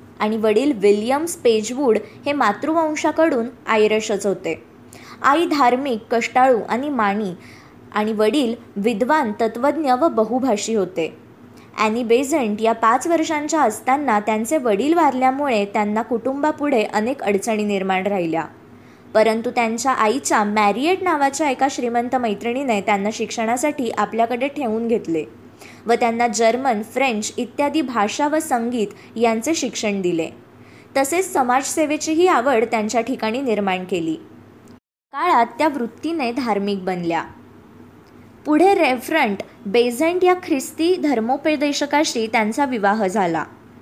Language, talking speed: Marathi, 110 wpm